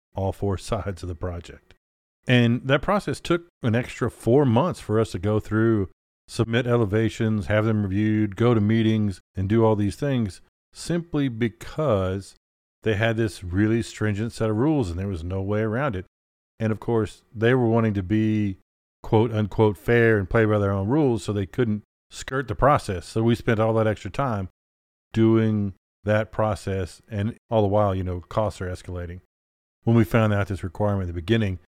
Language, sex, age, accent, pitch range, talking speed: English, male, 40-59, American, 95-115 Hz, 190 wpm